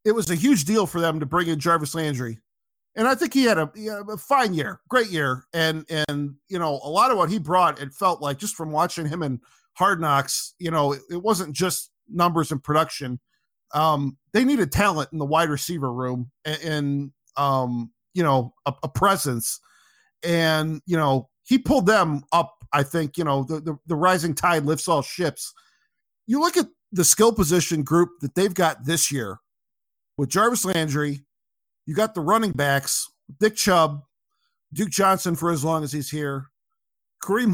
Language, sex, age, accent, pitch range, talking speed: English, male, 40-59, American, 150-205 Hz, 195 wpm